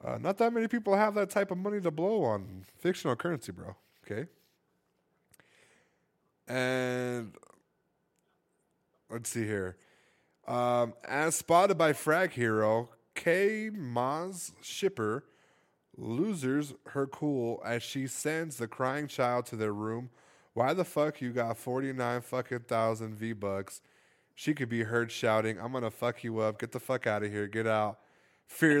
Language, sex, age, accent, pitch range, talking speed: English, male, 20-39, American, 110-155 Hz, 145 wpm